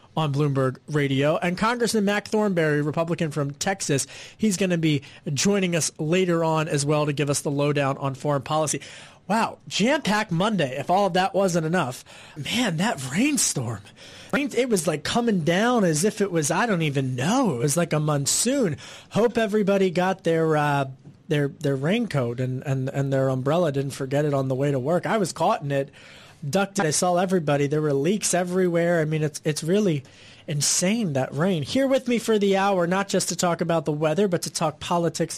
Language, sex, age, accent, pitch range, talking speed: English, male, 30-49, American, 145-200 Hz, 200 wpm